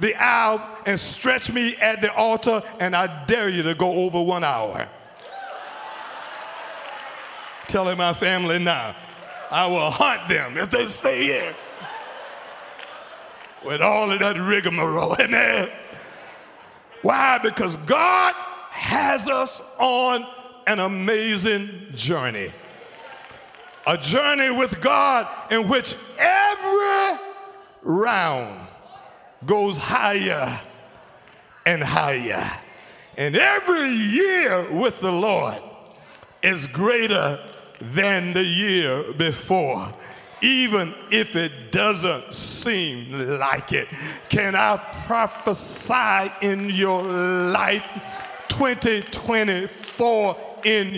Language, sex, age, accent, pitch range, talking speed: English, male, 50-69, American, 185-235 Hz, 100 wpm